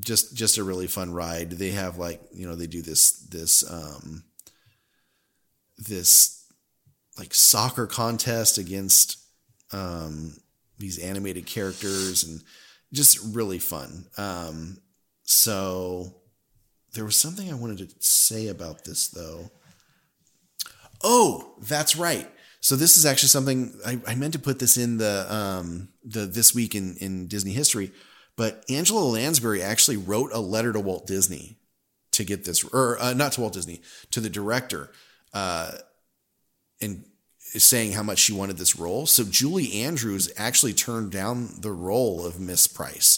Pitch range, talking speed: 90-115 Hz, 150 wpm